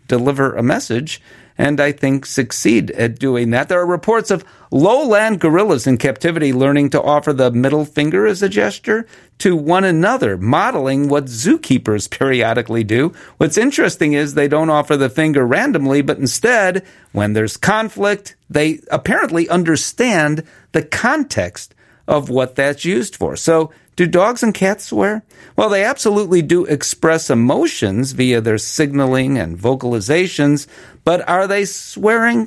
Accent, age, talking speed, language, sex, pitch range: American, 50-69, 150 wpm, English, male, 130-180 Hz